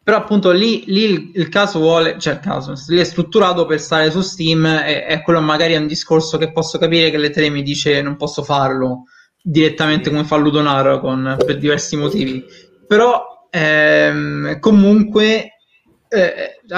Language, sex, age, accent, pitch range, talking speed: Italian, male, 20-39, native, 150-175 Hz, 165 wpm